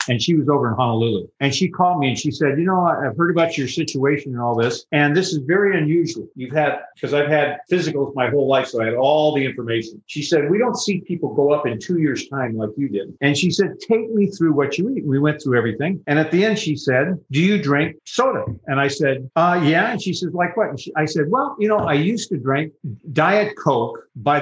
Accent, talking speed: American, 260 wpm